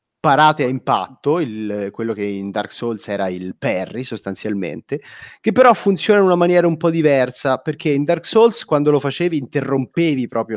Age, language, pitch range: 30-49, Italian, 110-160 Hz